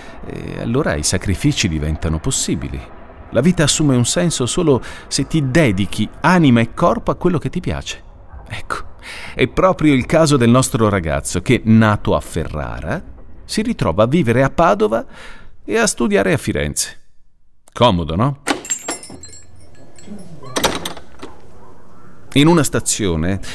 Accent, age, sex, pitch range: native, 40-59, male, 90-135 Hz